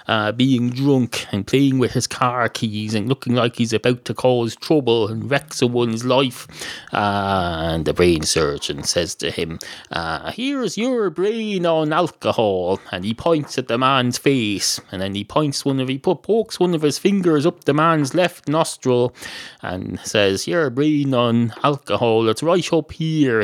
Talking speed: 175 wpm